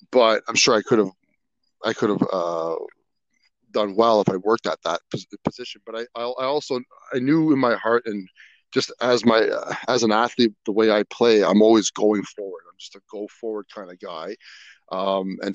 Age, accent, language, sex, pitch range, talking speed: 30-49, American, English, male, 105-120 Hz, 205 wpm